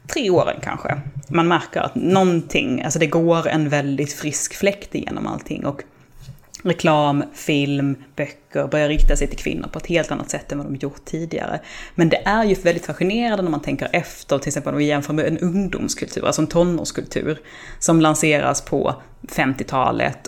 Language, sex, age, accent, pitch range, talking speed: Swedish, female, 20-39, native, 145-185 Hz, 180 wpm